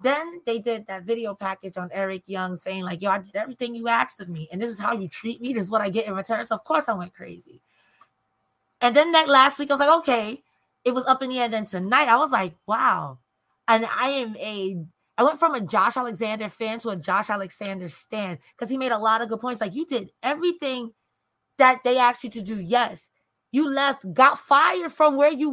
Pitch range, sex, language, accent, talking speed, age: 205-275 Hz, female, English, American, 240 wpm, 20-39